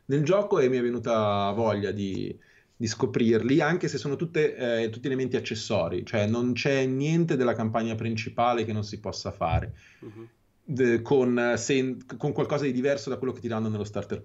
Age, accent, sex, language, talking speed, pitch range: 30-49, native, male, Italian, 175 wpm, 110-130 Hz